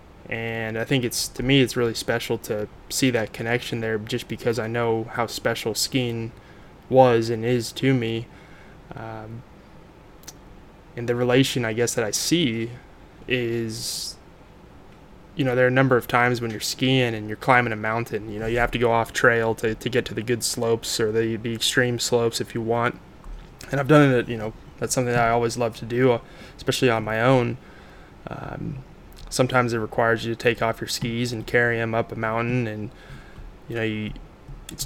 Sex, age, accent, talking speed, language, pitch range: male, 20-39, American, 195 wpm, English, 115-125 Hz